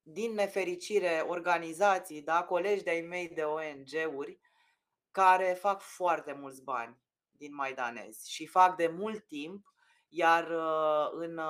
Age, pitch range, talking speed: 20-39, 160-200 Hz, 120 wpm